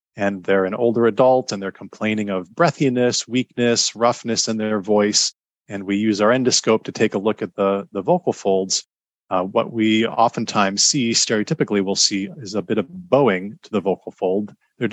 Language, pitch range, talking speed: English, 100-120 Hz, 190 wpm